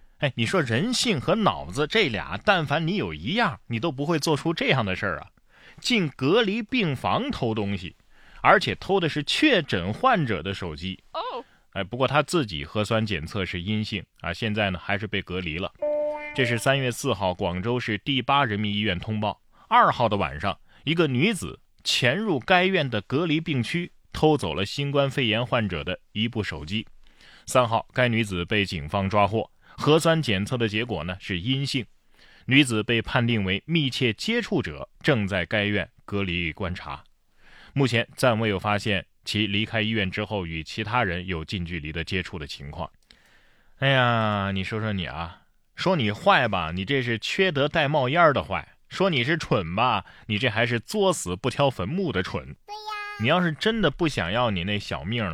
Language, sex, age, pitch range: Chinese, male, 20-39, 95-145 Hz